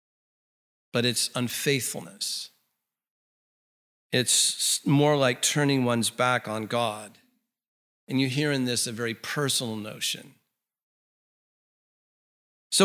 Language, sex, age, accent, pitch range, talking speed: English, male, 50-69, American, 130-155 Hz, 100 wpm